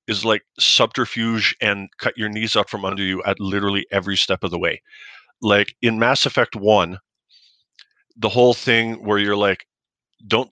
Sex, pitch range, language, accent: male, 100-115 Hz, English, American